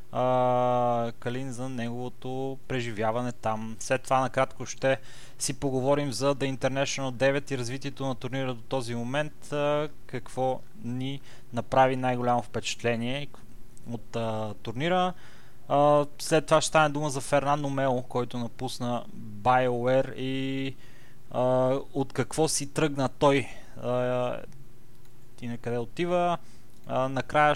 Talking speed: 125 wpm